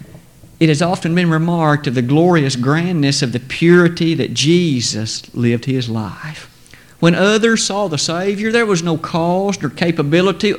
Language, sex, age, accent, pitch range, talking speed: English, male, 50-69, American, 140-180 Hz, 160 wpm